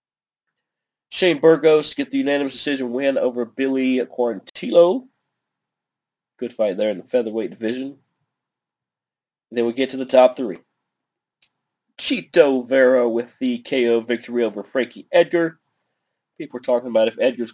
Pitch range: 125-165 Hz